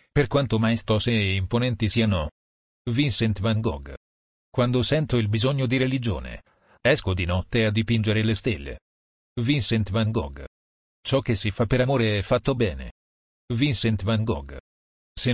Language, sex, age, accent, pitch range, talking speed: Italian, male, 40-59, native, 95-120 Hz, 150 wpm